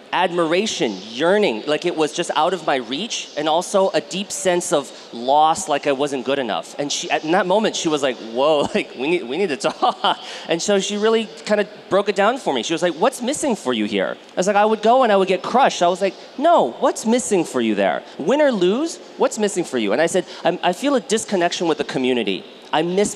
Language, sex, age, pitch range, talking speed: English, male, 30-49, 155-210 Hz, 255 wpm